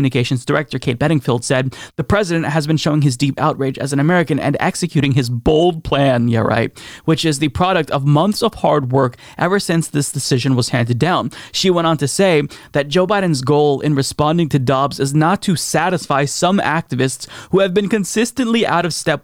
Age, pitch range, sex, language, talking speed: 30-49, 140-175 Hz, male, English, 205 wpm